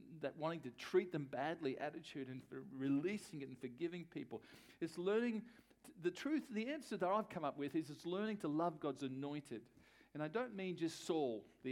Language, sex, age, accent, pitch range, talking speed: English, male, 50-69, Australian, 135-185 Hz, 205 wpm